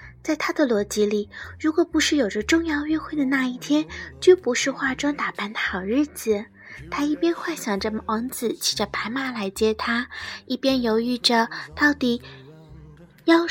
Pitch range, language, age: 225-310 Hz, Chinese, 20-39